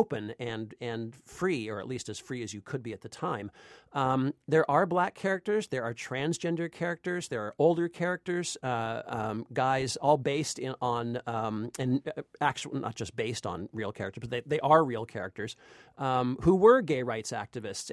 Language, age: English, 40-59